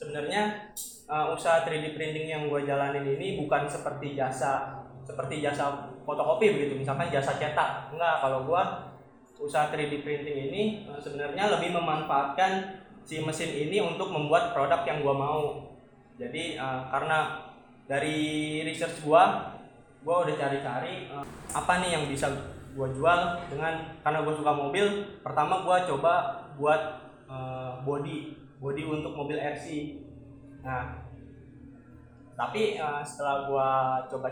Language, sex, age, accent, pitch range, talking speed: Indonesian, male, 20-39, native, 140-160 Hz, 135 wpm